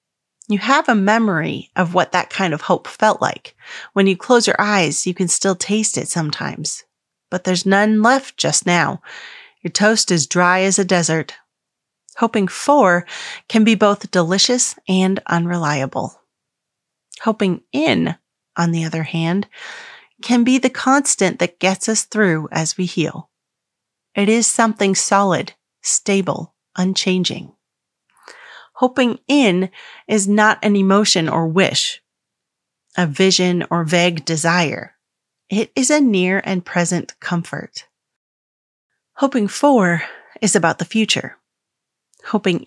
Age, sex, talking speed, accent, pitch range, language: 30-49, female, 130 wpm, American, 175-215 Hz, English